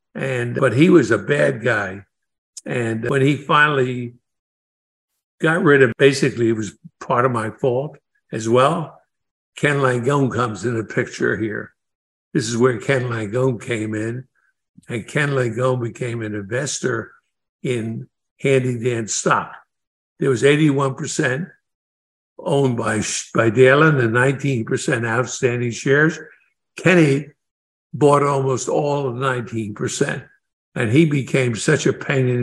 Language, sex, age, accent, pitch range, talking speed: English, male, 60-79, American, 115-140 Hz, 130 wpm